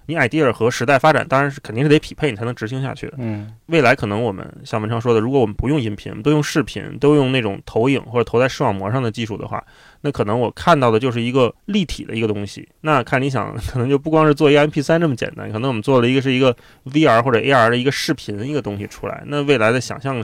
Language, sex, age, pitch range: Chinese, male, 20-39, 115-150 Hz